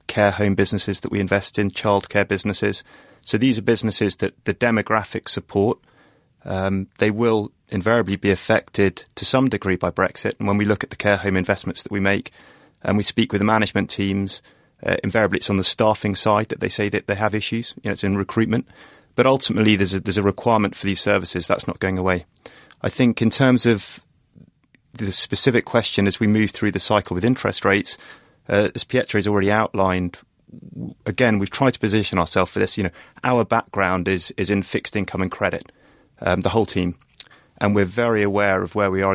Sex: male